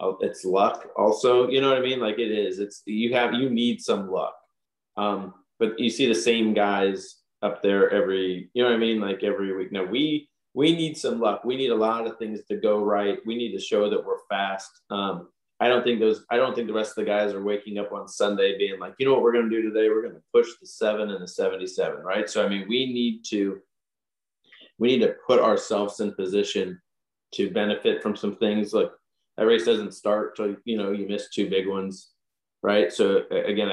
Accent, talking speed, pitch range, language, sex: American, 230 wpm, 95-125 Hz, English, male